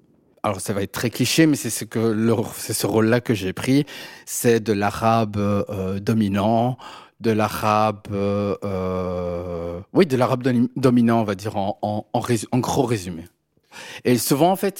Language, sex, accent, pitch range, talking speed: French, male, French, 110-130 Hz, 175 wpm